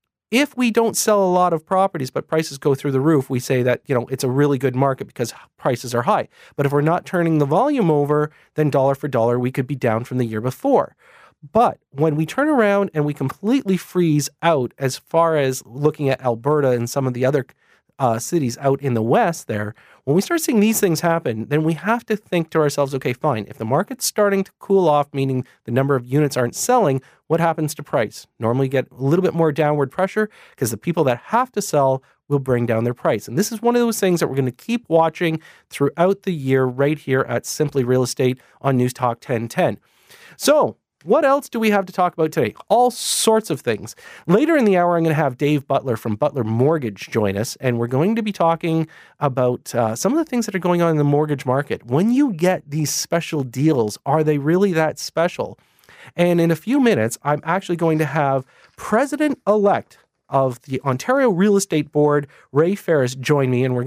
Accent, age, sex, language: American, 40-59, male, English